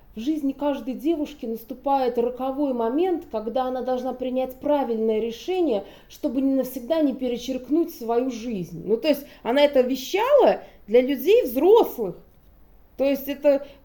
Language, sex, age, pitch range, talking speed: Russian, female, 20-39, 225-295 Hz, 140 wpm